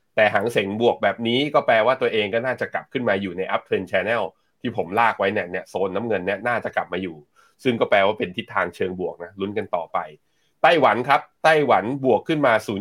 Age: 30-49